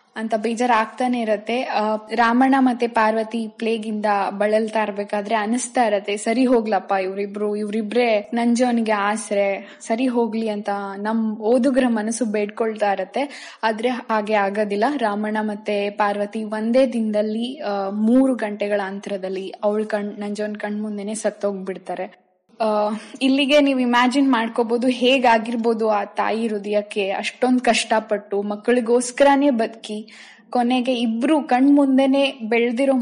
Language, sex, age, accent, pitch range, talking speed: Kannada, female, 10-29, native, 210-250 Hz, 105 wpm